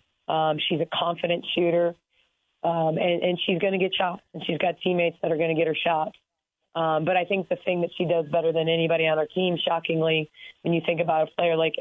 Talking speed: 240 wpm